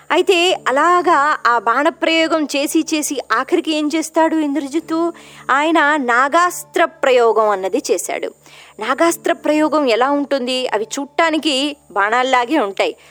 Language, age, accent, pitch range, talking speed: Telugu, 20-39, native, 250-355 Hz, 105 wpm